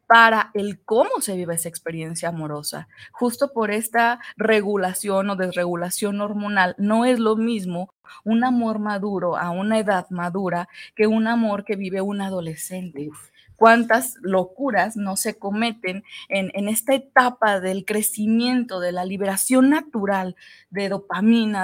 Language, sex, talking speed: Spanish, female, 140 wpm